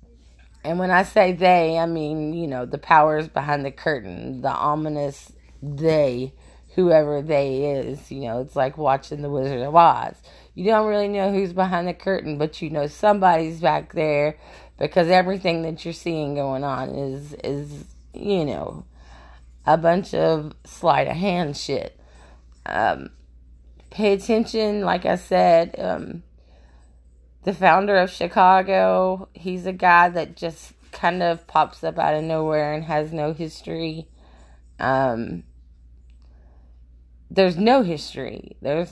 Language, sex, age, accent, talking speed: English, female, 30-49, American, 145 wpm